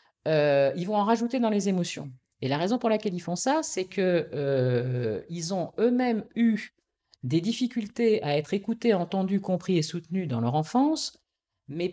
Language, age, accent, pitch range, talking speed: French, 50-69, French, 150-220 Hz, 175 wpm